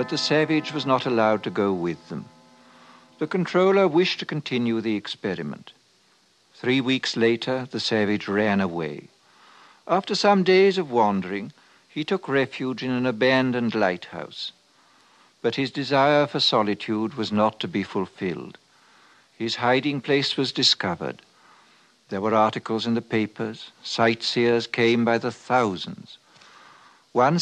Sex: male